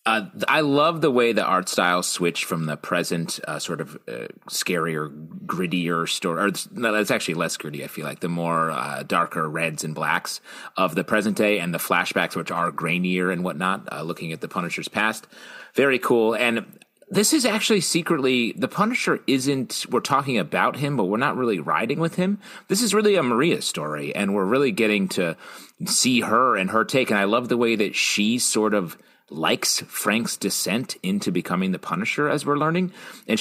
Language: English